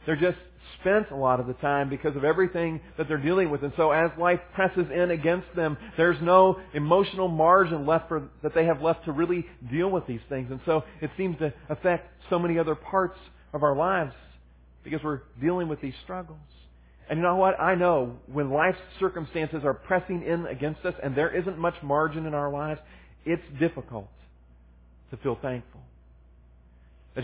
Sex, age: male, 40-59